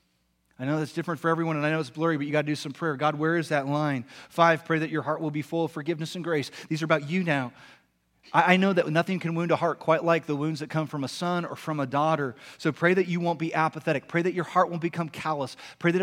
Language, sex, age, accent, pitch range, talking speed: English, male, 30-49, American, 140-175 Hz, 290 wpm